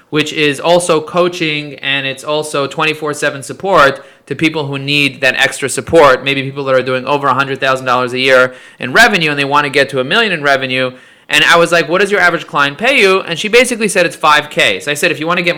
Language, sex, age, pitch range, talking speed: English, male, 30-49, 140-185 Hz, 235 wpm